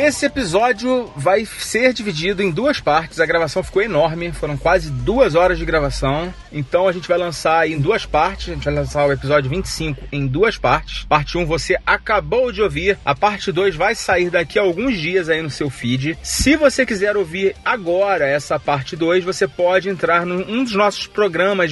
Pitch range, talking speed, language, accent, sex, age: 140-195 Hz, 195 wpm, Portuguese, Brazilian, male, 30-49